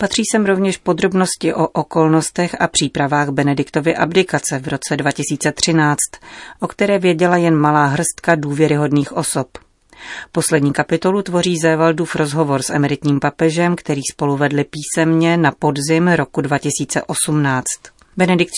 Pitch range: 145-165 Hz